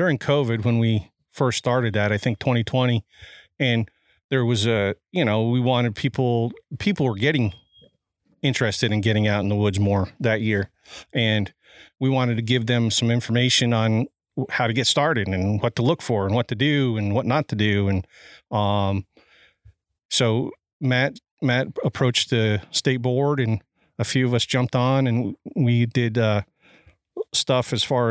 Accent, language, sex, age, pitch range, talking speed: American, English, male, 40-59, 105-130 Hz, 175 wpm